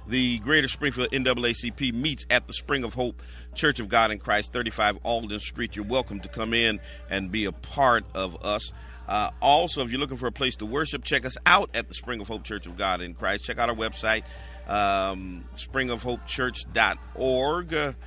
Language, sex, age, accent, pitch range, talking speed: English, male, 40-59, American, 90-120 Hz, 195 wpm